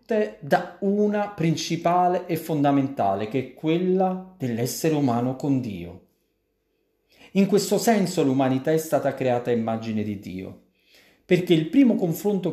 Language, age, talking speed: Italian, 40-59, 130 wpm